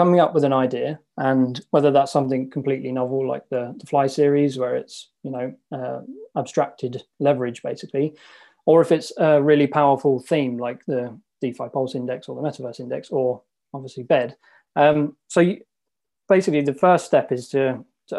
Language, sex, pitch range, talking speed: English, male, 130-150 Hz, 175 wpm